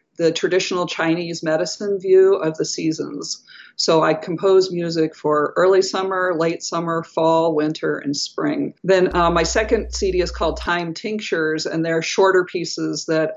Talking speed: 155 wpm